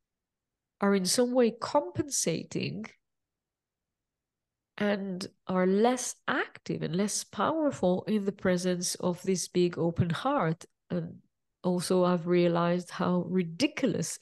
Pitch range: 180-235 Hz